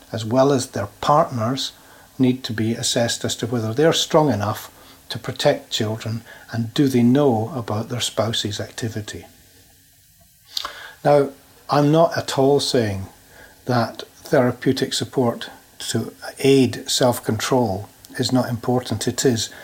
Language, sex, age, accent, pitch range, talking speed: English, male, 60-79, British, 115-140 Hz, 130 wpm